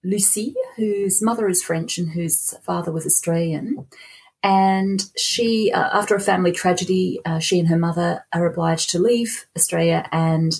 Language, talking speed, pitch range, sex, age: English, 160 wpm, 160-195 Hz, female, 30-49